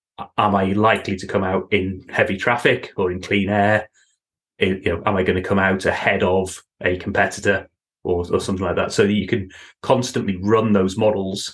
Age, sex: 30-49, male